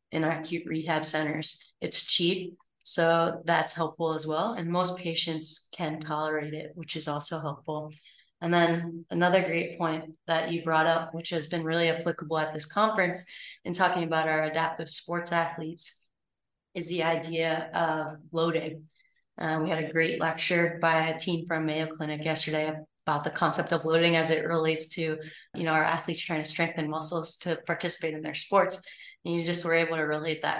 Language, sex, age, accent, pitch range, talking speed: English, female, 20-39, American, 155-170 Hz, 180 wpm